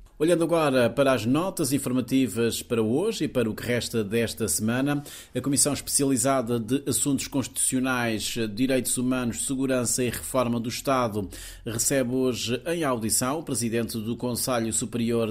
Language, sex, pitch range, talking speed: Portuguese, male, 115-130 Hz, 145 wpm